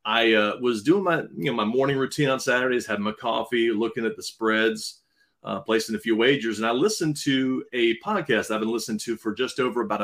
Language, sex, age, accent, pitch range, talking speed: English, male, 30-49, American, 105-140 Hz, 225 wpm